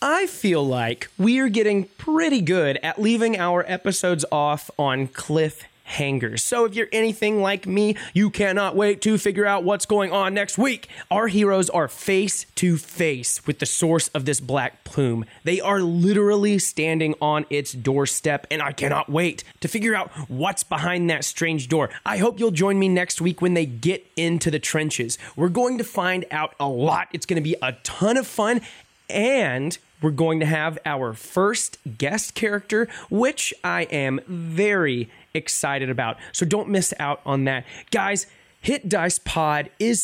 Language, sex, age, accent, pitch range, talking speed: English, male, 20-39, American, 150-205 Hz, 175 wpm